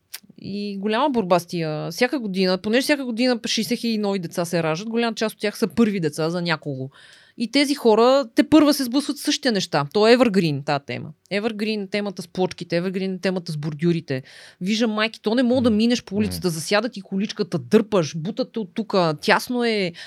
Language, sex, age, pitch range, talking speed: Bulgarian, female, 20-39, 180-245 Hz, 190 wpm